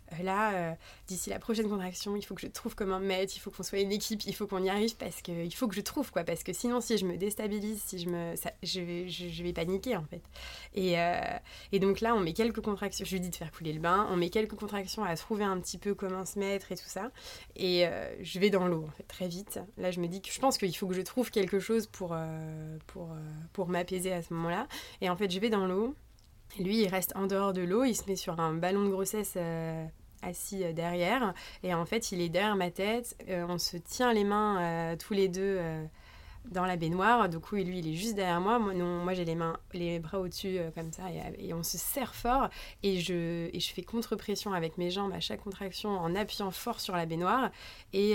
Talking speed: 265 wpm